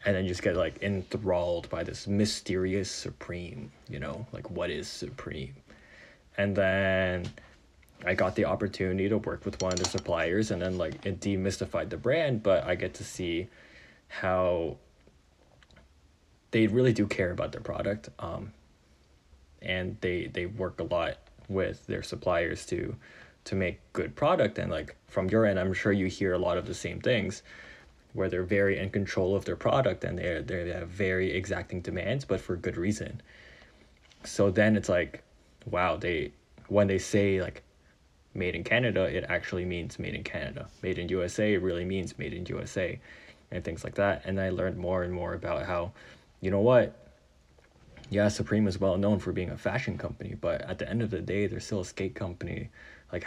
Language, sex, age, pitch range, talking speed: English, male, 20-39, 90-100 Hz, 185 wpm